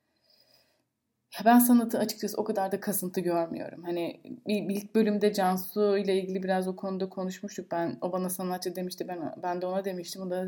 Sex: female